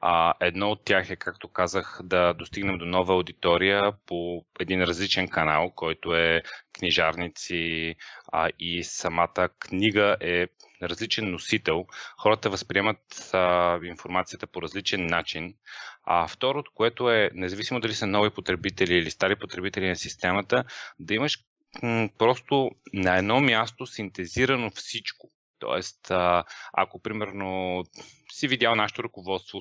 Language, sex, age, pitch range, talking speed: Bulgarian, male, 30-49, 90-115 Hz, 125 wpm